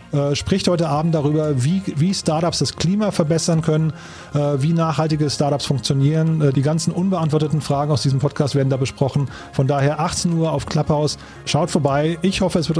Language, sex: German, male